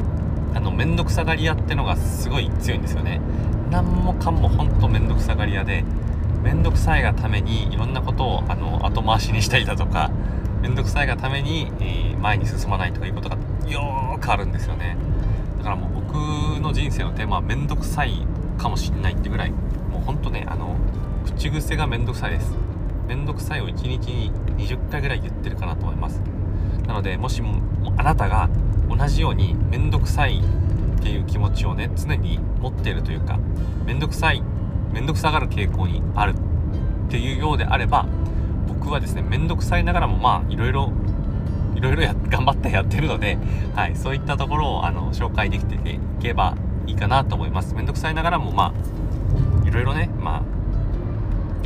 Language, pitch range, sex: Japanese, 90-110 Hz, male